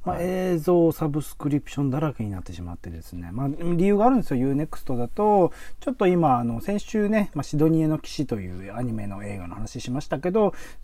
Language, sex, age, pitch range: Japanese, male, 40-59, 110-175 Hz